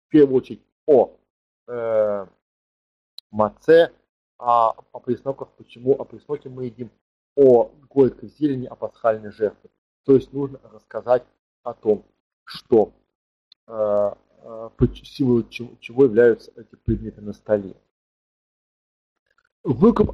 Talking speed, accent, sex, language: 115 wpm, native, male, Russian